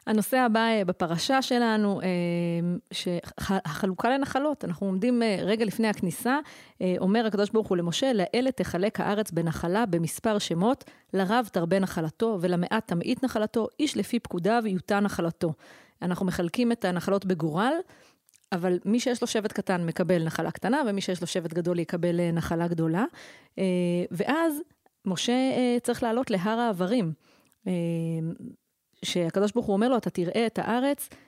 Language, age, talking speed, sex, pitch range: Hebrew, 30-49, 135 wpm, female, 180-235 Hz